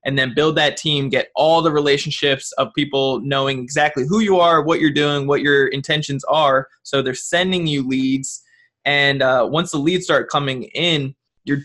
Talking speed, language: 190 wpm, English